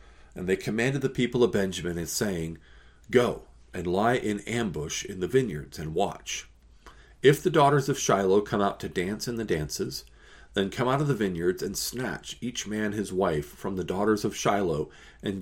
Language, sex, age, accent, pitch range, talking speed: English, male, 40-59, American, 85-115 Hz, 190 wpm